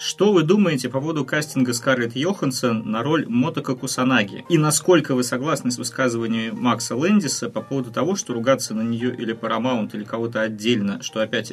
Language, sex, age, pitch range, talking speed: Russian, male, 30-49, 115-135 Hz, 175 wpm